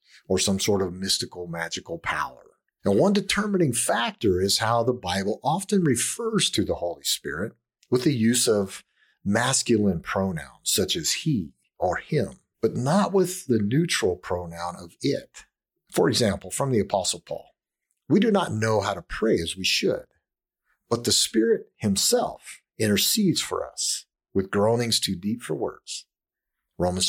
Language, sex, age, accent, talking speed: English, male, 50-69, American, 155 wpm